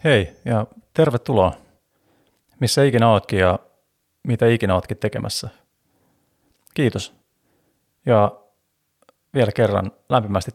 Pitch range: 105-125 Hz